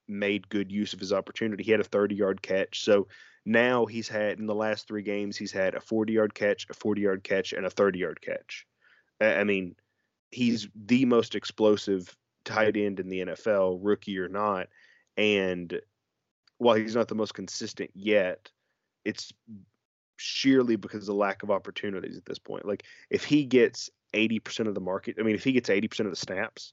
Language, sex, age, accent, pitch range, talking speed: English, male, 20-39, American, 100-110 Hz, 195 wpm